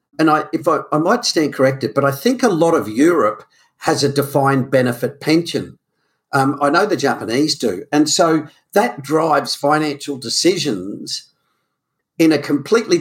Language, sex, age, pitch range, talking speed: English, male, 50-69, 135-160 Hz, 160 wpm